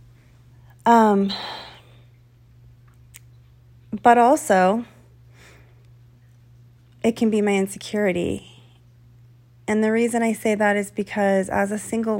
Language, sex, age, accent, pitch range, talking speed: English, female, 30-49, American, 120-200 Hz, 95 wpm